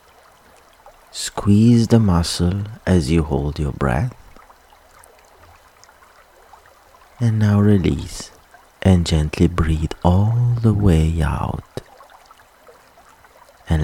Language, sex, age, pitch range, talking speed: English, male, 50-69, 75-95 Hz, 80 wpm